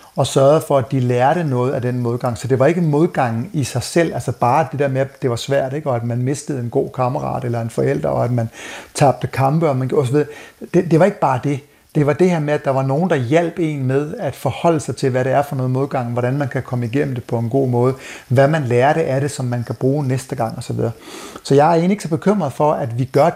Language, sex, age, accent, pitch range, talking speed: Danish, male, 60-79, native, 130-160 Hz, 280 wpm